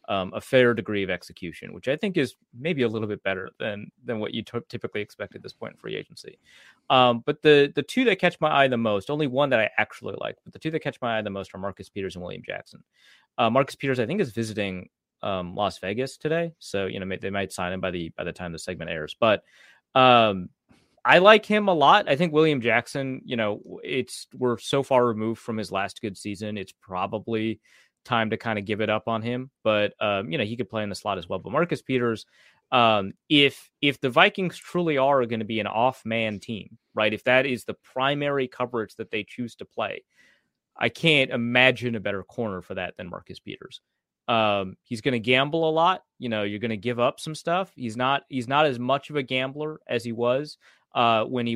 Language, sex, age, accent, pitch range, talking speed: English, male, 30-49, American, 110-140 Hz, 235 wpm